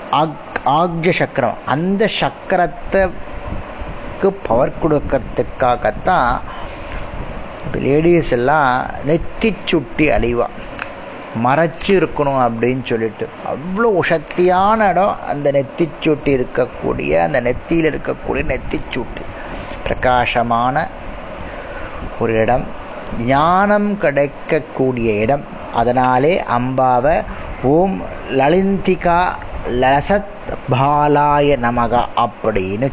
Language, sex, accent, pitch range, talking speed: Tamil, male, native, 125-170 Hz, 65 wpm